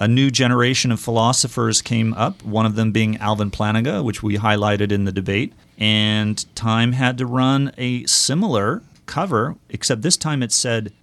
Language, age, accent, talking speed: English, 40-59, American, 175 wpm